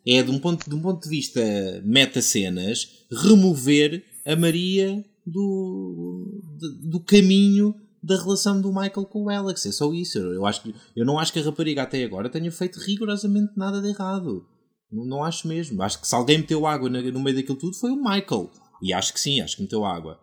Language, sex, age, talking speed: Portuguese, male, 20-39, 210 wpm